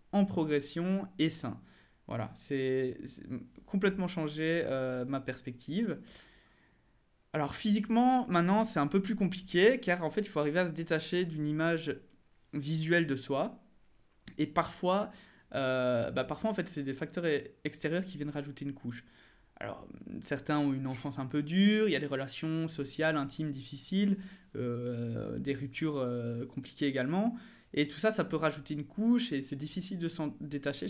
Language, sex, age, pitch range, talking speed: French, male, 20-39, 135-180 Hz, 165 wpm